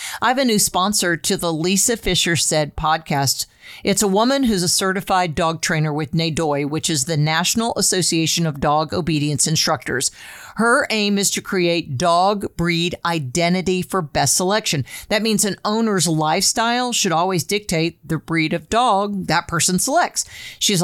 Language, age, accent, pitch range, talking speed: English, 50-69, American, 165-205 Hz, 165 wpm